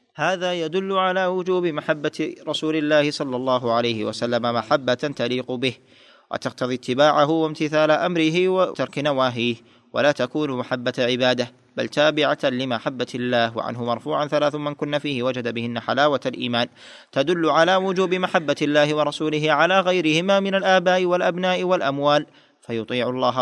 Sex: male